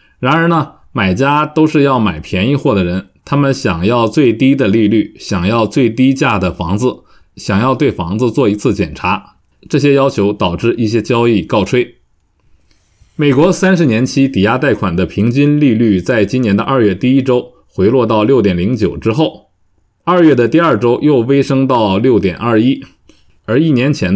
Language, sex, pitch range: Chinese, male, 100-135 Hz